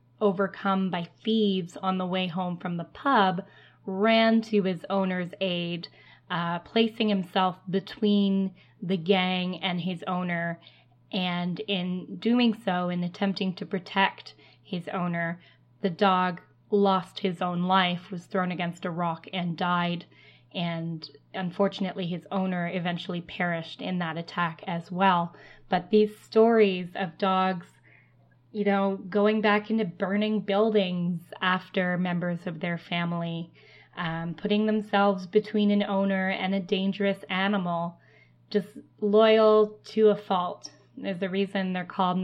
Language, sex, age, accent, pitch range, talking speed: English, female, 20-39, American, 175-200 Hz, 135 wpm